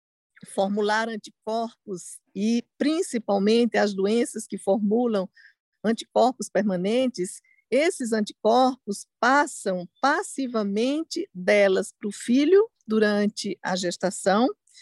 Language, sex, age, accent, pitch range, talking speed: Portuguese, female, 50-69, Brazilian, 205-260 Hz, 85 wpm